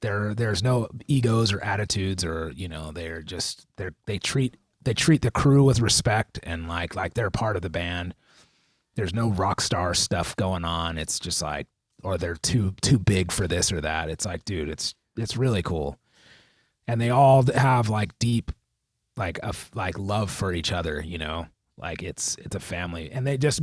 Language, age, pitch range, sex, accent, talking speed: English, 30-49, 90-125 Hz, male, American, 195 wpm